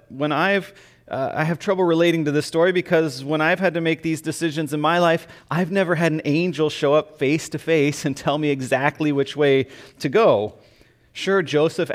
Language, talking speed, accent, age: English, 205 wpm, American, 30-49